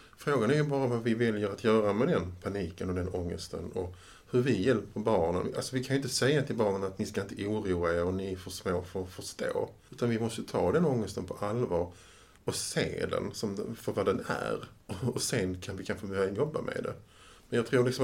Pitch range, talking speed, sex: 90-115 Hz, 240 wpm, male